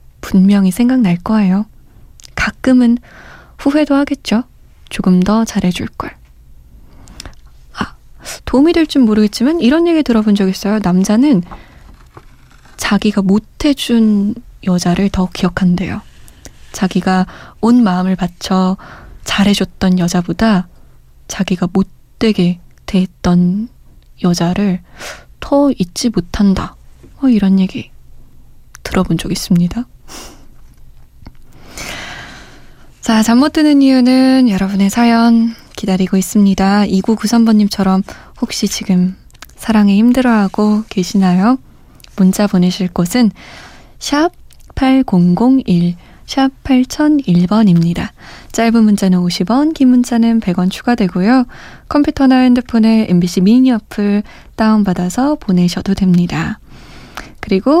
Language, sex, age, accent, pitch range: Korean, female, 20-39, native, 185-240 Hz